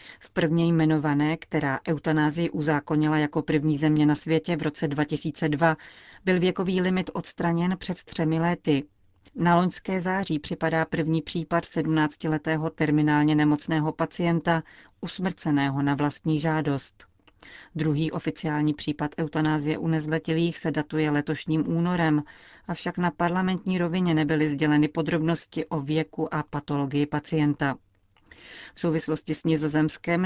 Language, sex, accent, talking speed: Czech, female, native, 120 wpm